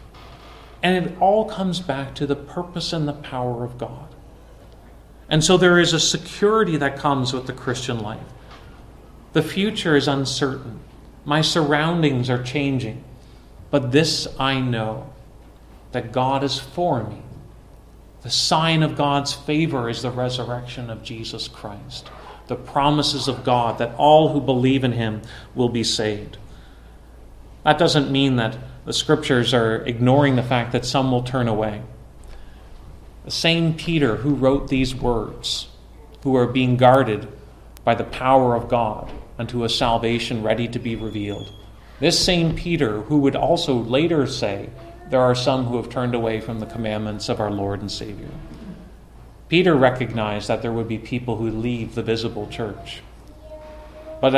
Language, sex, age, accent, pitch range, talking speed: English, male, 40-59, American, 115-145 Hz, 155 wpm